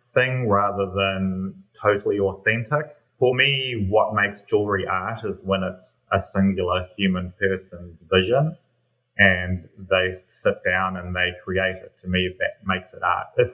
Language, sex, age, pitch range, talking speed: English, male, 30-49, 95-110 Hz, 150 wpm